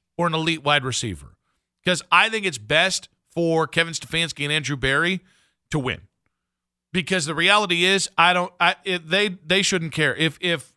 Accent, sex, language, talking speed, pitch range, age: American, male, English, 180 wpm, 145-180 Hz, 50-69